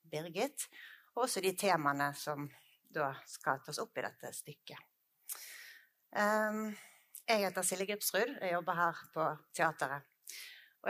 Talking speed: 125 wpm